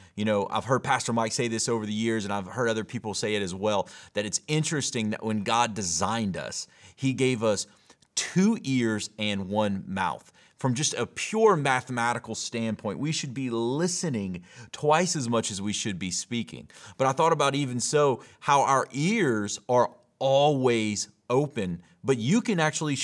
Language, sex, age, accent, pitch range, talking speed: English, male, 30-49, American, 110-145 Hz, 180 wpm